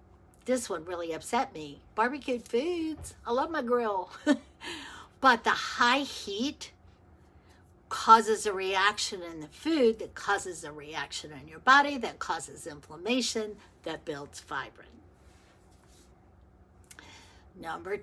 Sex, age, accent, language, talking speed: female, 60-79, American, English, 115 wpm